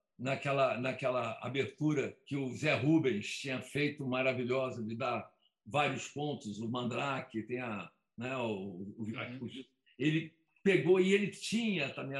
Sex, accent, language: male, Brazilian, Portuguese